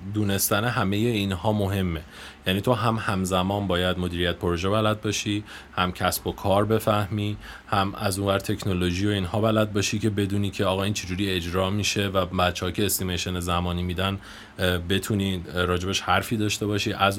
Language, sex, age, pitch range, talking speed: Persian, male, 30-49, 90-110 Hz, 165 wpm